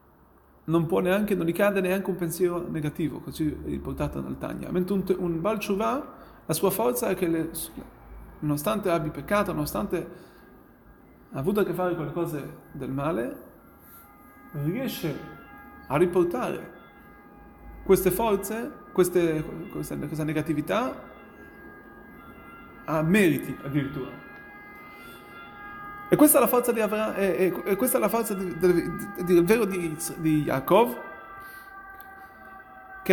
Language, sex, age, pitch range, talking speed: Italian, male, 30-49, 160-220 Hz, 100 wpm